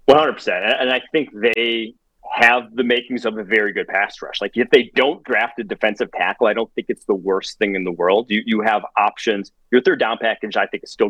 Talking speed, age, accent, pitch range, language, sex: 240 wpm, 30-49, American, 105-130 Hz, English, male